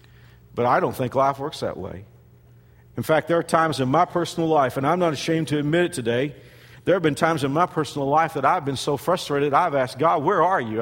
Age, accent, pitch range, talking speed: 50-69, American, 135-175 Hz, 245 wpm